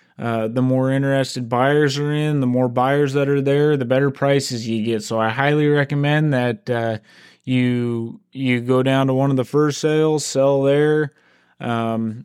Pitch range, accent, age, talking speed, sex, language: 125-150 Hz, American, 20-39, 180 wpm, male, English